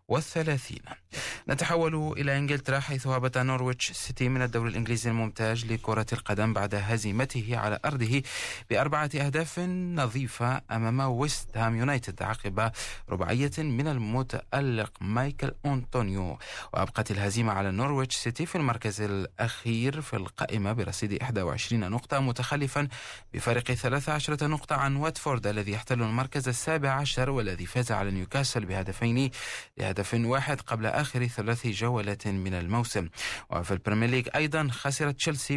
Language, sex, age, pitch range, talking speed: Arabic, male, 30-49, 105-135 Hz, 125 wpm